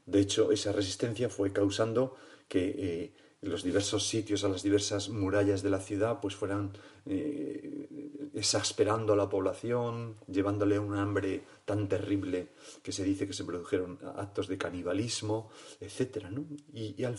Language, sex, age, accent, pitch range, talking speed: Spanish, male, 40-59, Spanish, 100-140 Hz, 155 wpm